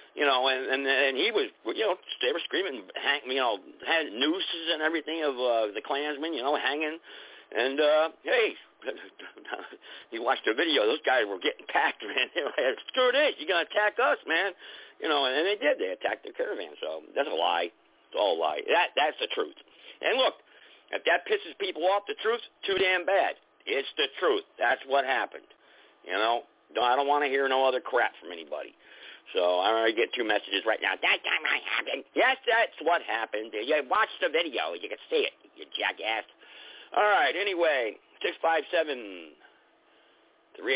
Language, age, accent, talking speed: English, 50-69, American, 195 wpm